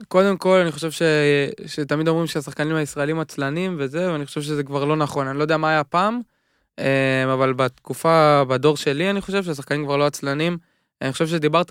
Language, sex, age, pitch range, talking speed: Hebrew, male, 20-39, 140-170 Hz, 185 wpm